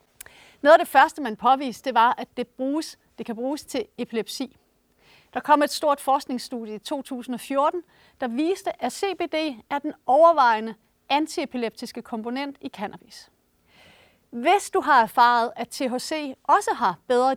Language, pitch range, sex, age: Danish, 235-305 Hz, female, 40-59